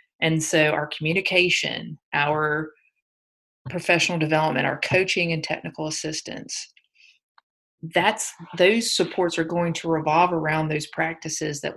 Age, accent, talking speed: 40-59, American, 115 wpm